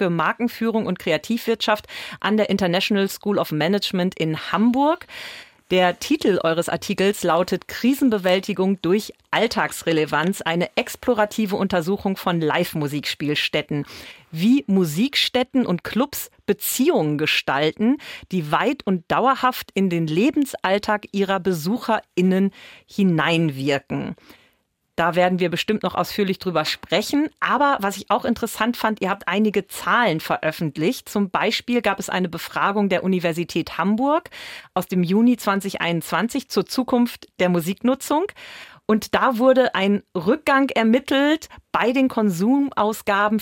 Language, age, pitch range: German, 40-59, 180-235 Hz